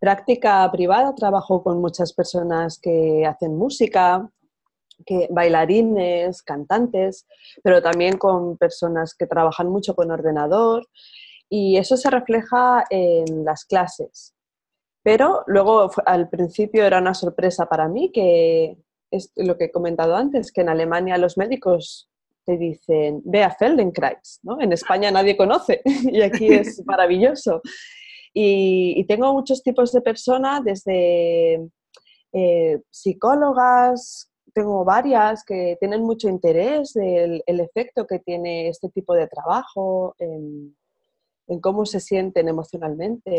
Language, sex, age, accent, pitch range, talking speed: German, female, 20-39, Spanish, 170-225 Hz, 130 wpm